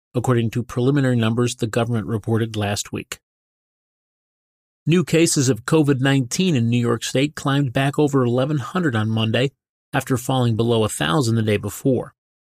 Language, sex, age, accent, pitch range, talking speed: English, male, 30-49, American, 115-145 Hz, 145 wpm